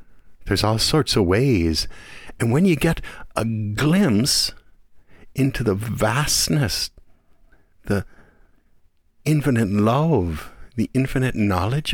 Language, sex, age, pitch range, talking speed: English, male, 50-69, 80-115 Hz, 100 wpm